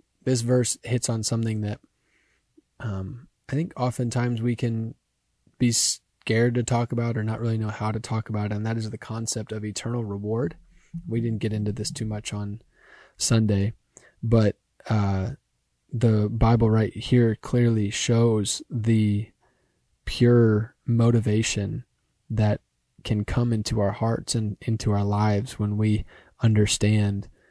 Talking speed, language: 145 wpm, English